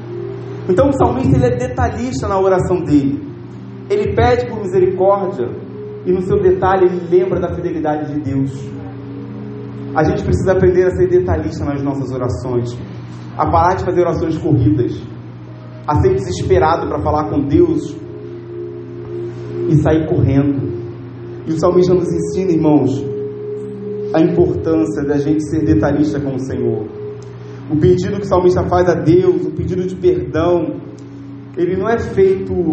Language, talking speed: Portuguese, 145 wpm